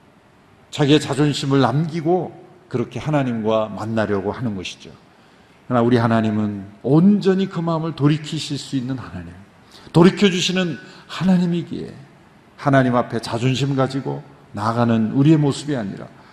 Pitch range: 115-170 Hz